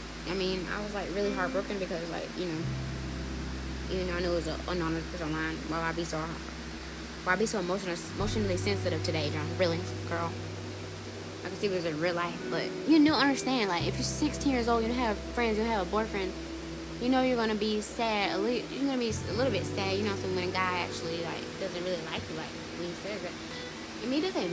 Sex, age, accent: female, 10-29, American